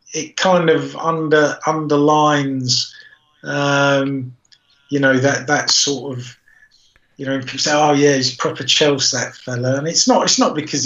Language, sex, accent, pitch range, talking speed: English, male, British, 135-155 Hz, 165 wpm